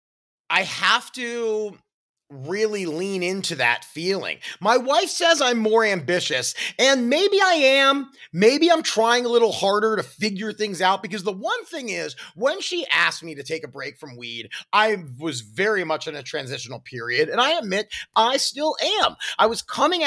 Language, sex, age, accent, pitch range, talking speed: English, male, 30-49, American, 170-245 Hz, 180 wpm